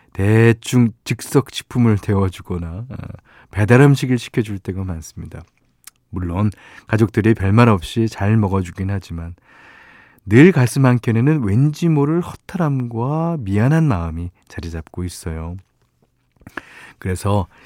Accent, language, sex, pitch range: native, Korean, male, 100-135 Hz